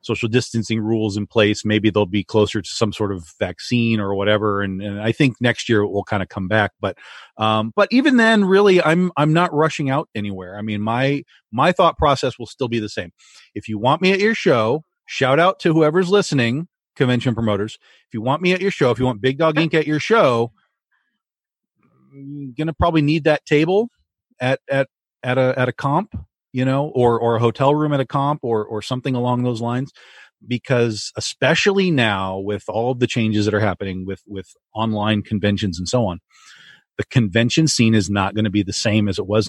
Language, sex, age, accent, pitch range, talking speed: English, male, 40-59, American, 105-140 Hz, 215 wpm